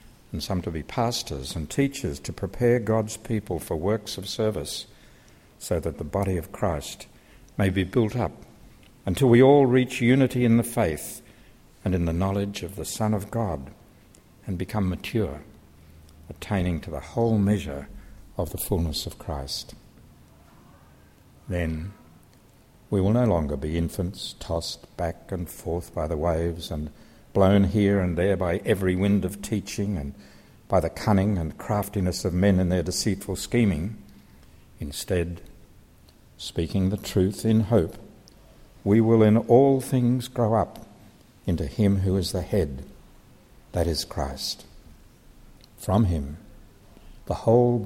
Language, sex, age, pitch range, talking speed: English, male, 60-79, 85-110 Hz, 145 wpm